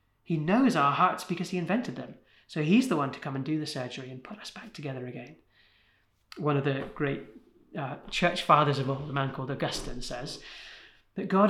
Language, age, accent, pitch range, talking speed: English, 30-49, British, 135-190 Hz, 210 wpm